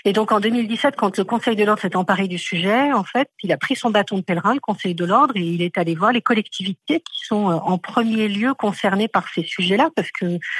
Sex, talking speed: female, 250 wpm